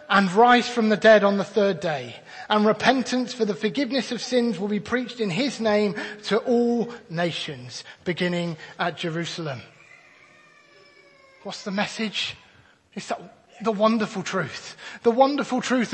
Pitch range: 195-250 Hz